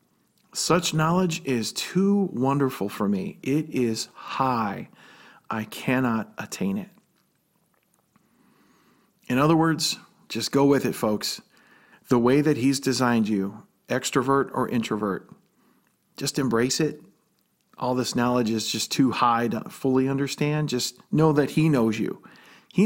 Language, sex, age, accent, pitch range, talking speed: English, male, 40-59, American, 120-155 Hz, 135 wpm